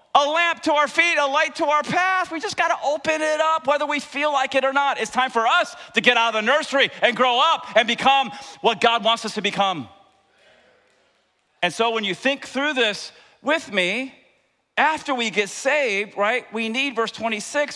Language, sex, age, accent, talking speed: English, male, 40-59, American, 210 wpm